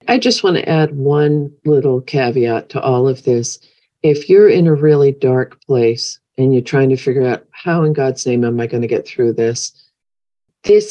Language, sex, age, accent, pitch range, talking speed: English, female, 50-69, American, 130-160 Hz, 205 wpm